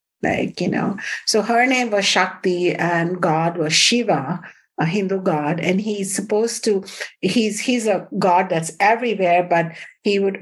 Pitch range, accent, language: 175-210 Hz, Indian, English